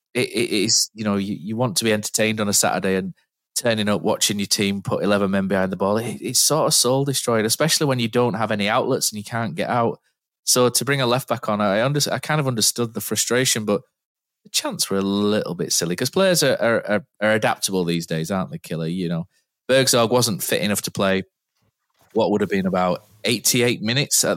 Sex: male